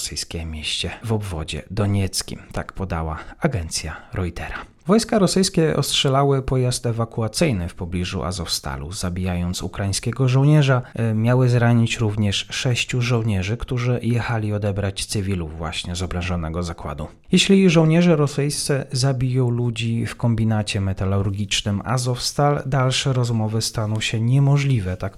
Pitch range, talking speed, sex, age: 95-135 Hz, 115 wpm, male, 30-49